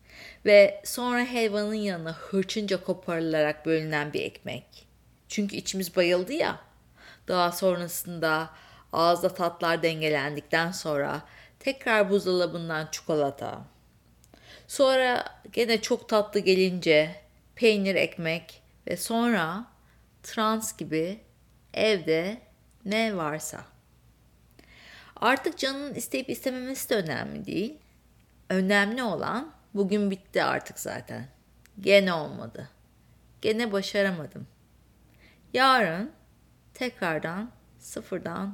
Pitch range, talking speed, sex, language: 165-225 Hz, 85 wpm, female, Turkish